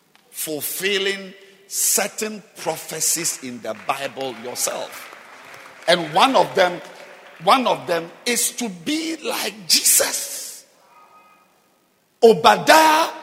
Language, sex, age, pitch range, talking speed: English, male, 50-69, 210-315 Hz, 90 wpm